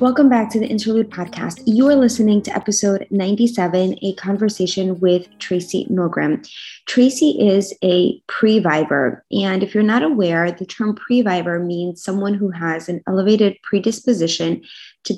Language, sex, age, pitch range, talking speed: English, female, 20-39, 180-215 Hz, 145 wpm